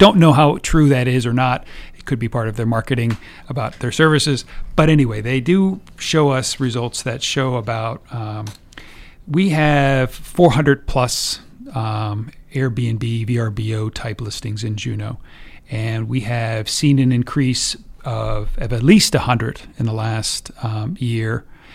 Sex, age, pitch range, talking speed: male, 40-59, 115-145 Hz, 155 wpm